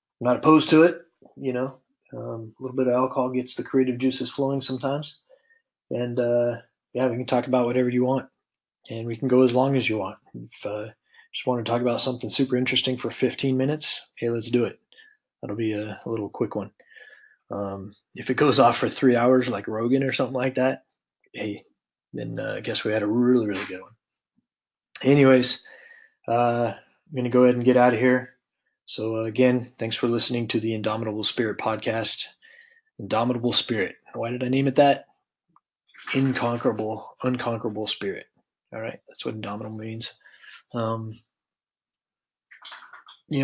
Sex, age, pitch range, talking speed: male, 20-39, 110-130 Hz, 175 wpm